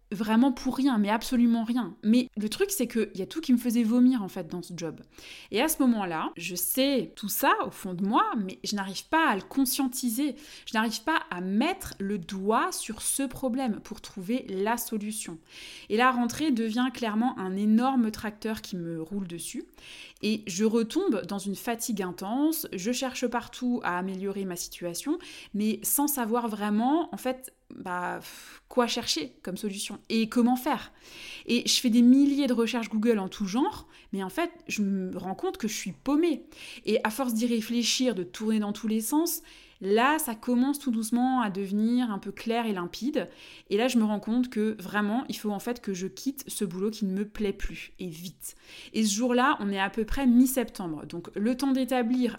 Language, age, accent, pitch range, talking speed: French, 20-39, French, 200-250 Hz, 205 wpm